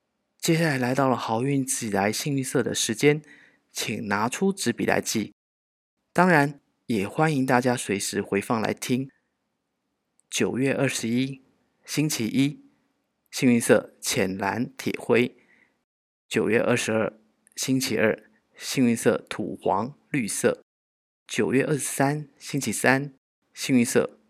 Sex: male